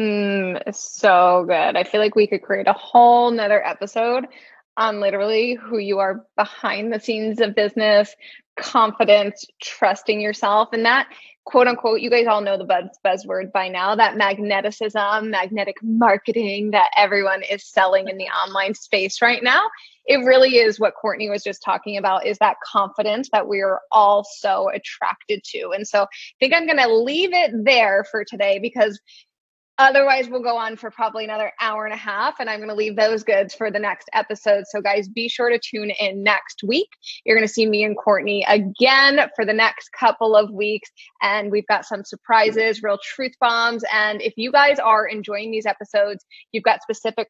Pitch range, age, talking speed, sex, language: 205-235 Hz, 20-39, 190 wpm, female, English